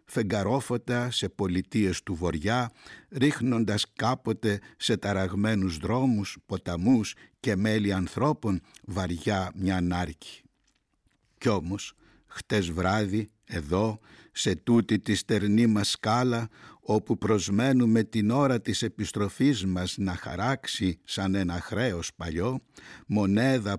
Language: Greek